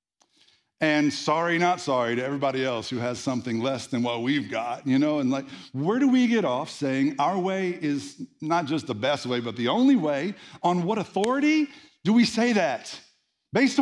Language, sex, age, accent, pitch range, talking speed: English, male, 50-69, American, 135-180 Hz, 195 wpm